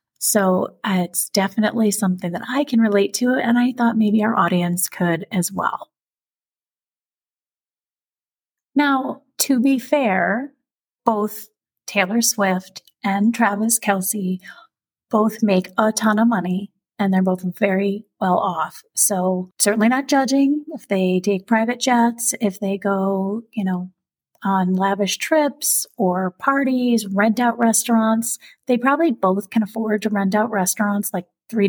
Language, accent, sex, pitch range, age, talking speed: English, American, female, 190-235 Hz, 30-49, 135 wpm